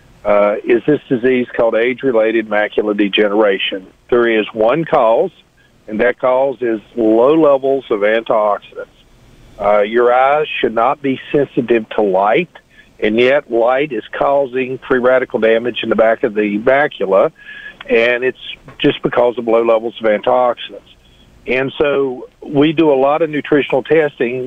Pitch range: 115-150 Hz